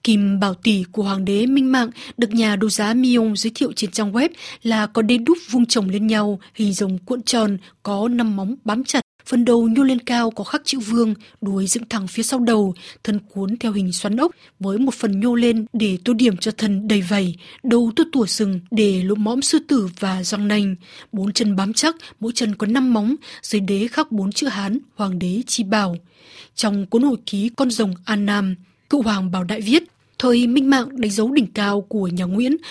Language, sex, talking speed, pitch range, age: Vietnamese, female, 225 wpm, 200-245 Hz, 20-39